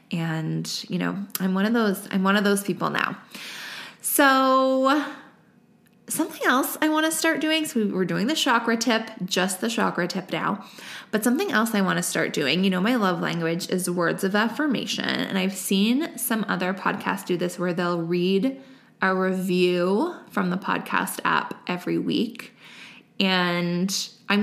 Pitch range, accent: 185-255 Hz, American